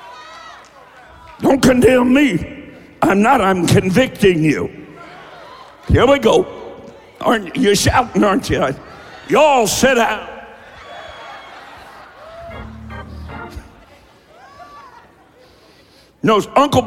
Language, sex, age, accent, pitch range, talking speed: English, male, 60-79, American, 145-190 Hz, 80 wpm